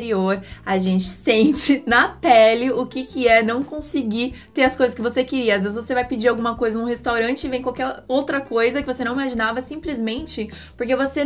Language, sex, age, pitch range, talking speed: Portuguese, female, 20-39, 215-270 Hz, 205 wpm